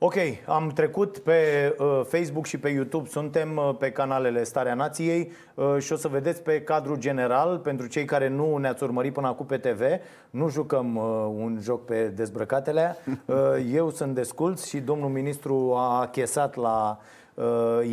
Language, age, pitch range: Romanian, 30-49, 120-145 Hz